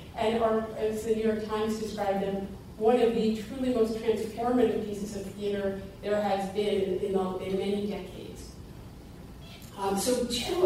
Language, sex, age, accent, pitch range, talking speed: English, female, 40-59, American, 195-225 Hz, 150 wpm